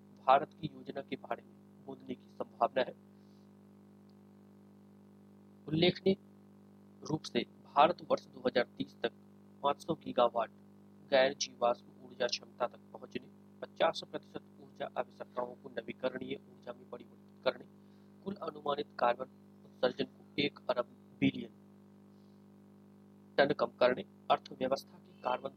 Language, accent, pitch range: Hindi, native, 155-200 Hz